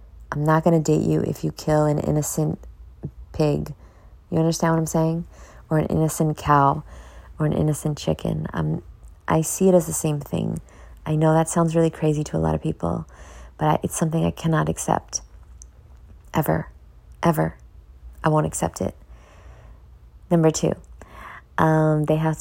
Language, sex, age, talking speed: English, female, 20-39, 165 wpm